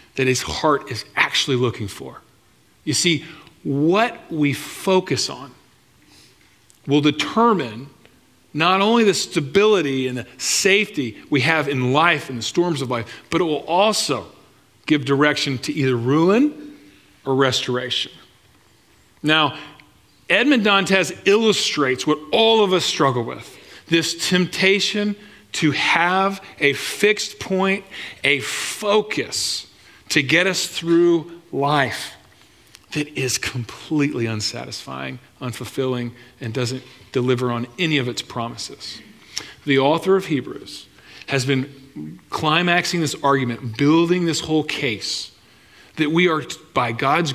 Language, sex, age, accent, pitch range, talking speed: English, male, 40-59, American, 125-175 Hz, 125 wpm